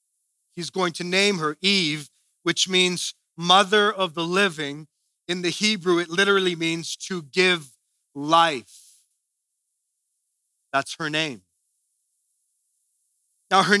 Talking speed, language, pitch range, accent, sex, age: 115 wpm, English, 175-230 Hz, American, male, 40-59